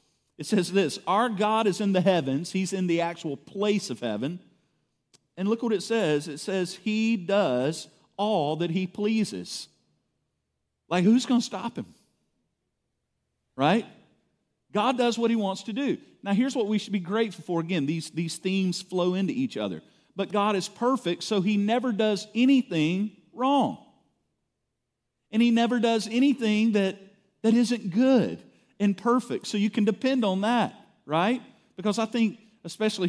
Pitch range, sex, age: 155-220 Hz, male, 40-59